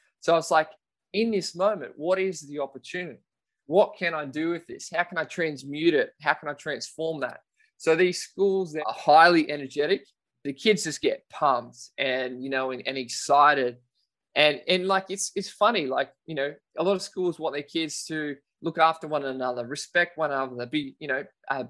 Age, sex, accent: 20-39, male, Australian